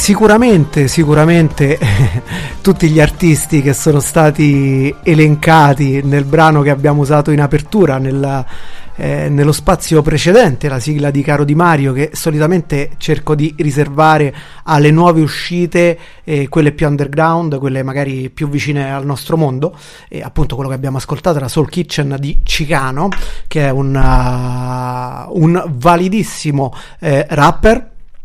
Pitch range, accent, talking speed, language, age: 135-165 Hz, native, 140 wpm, Italian, 30-49